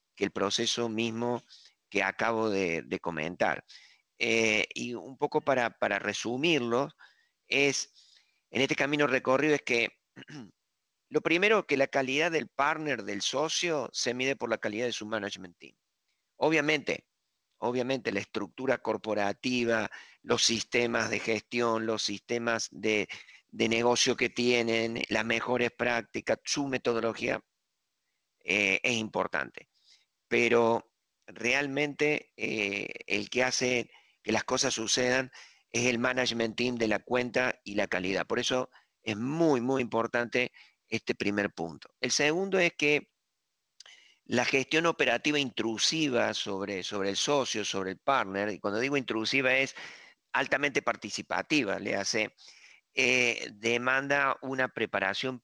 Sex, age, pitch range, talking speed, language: male, 50-69, 110-135 Hz, 130 wpm, Spanish